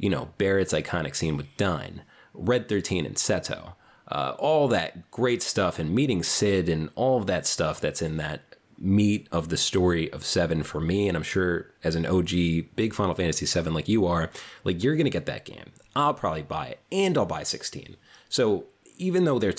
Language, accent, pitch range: English, American, 80-105 Hz